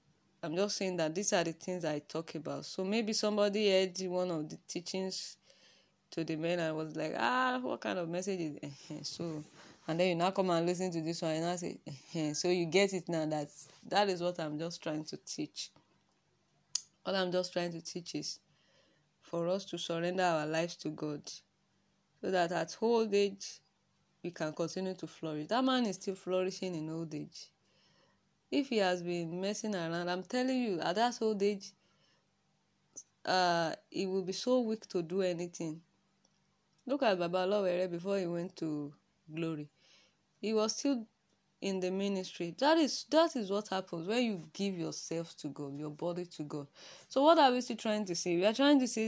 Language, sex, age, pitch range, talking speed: English, female, 20-39, 165-205 Hz, 195 wpm